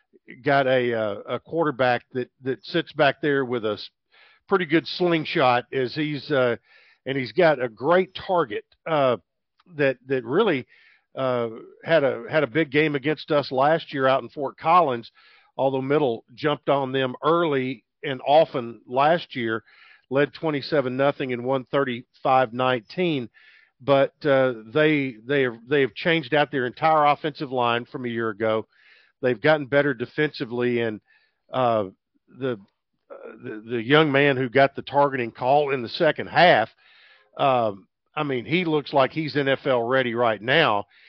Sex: male